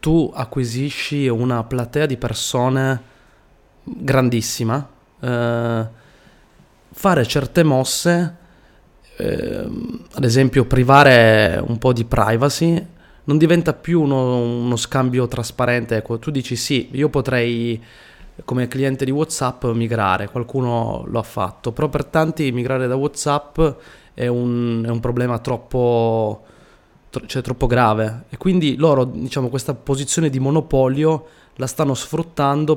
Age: 20-39